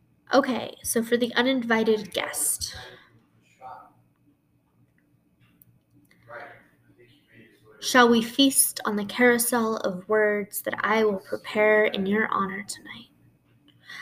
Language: English